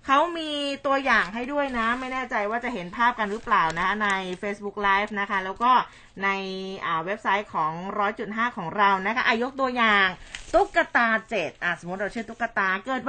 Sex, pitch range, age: female, 195-255 Hz, 20-39